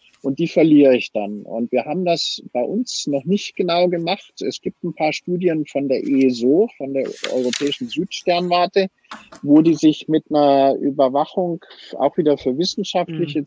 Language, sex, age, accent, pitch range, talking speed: German, male, 50-69, German, 135-170 Hz, 165 wpm